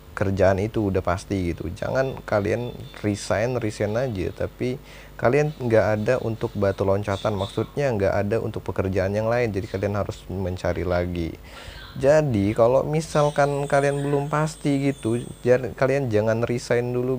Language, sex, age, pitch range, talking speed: Indonesian, male, 20-39, 95-115 Hz, 145 wpm